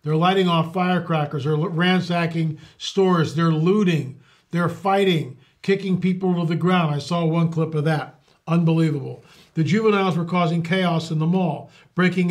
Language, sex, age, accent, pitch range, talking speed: English, male, 50-69, American, 155-180 Hz, 155 wpm